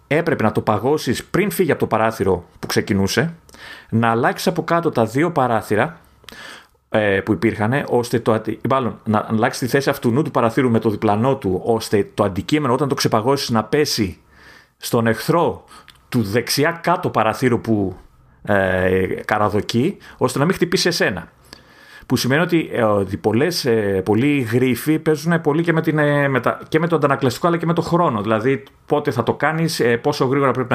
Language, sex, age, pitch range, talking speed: Greek, male, 30-49, 110-160 Hz, 180 wpm